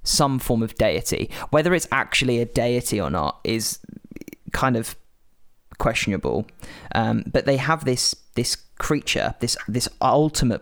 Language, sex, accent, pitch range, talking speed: English, male, British, 105-130 Hz, 140 wpm